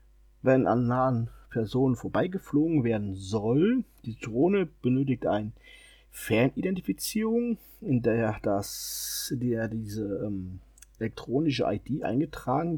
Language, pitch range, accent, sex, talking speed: German, 115-175 Hz, German, male, 90 wpm